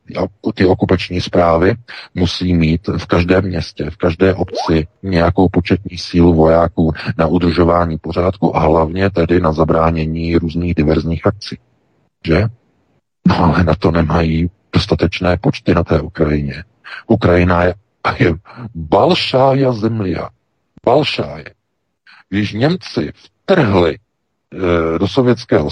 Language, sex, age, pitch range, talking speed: Czech, male, 50-69, 85-100 Hz, 115 wpm